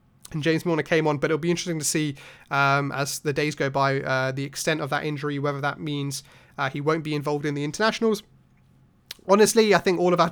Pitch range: 140-170 Hz